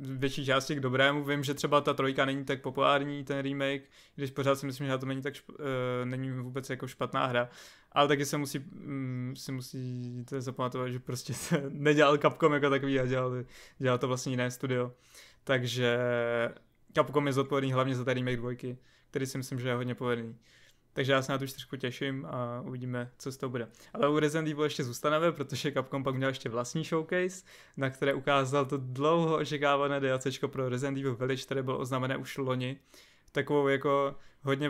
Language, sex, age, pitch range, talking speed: Czech, male, 20-39, 130-140 Hz, 195 wpm